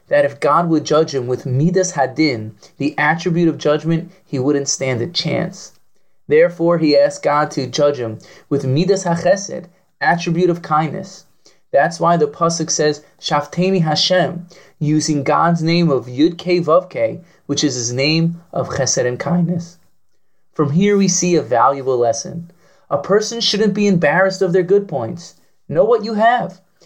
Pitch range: 150-190 Hz